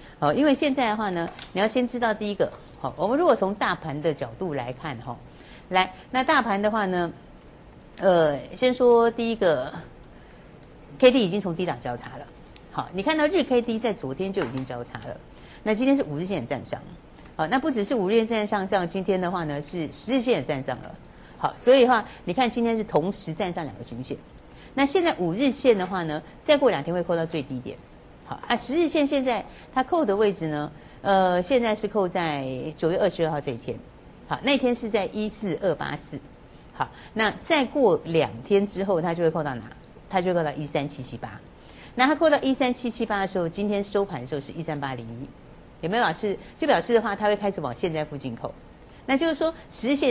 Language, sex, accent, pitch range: Chinese, female, American, 150-240 Hz